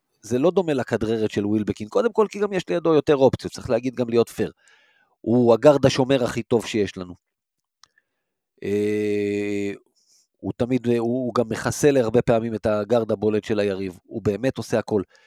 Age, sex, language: 40-59, male, Hebrew